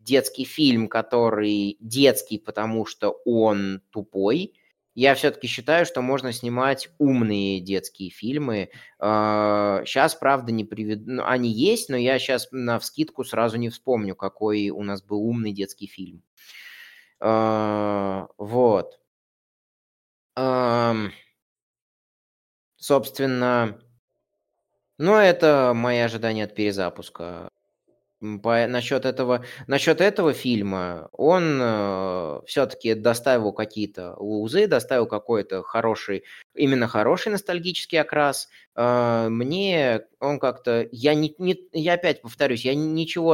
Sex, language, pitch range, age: male, Russian, 105-145 Hz, 20-39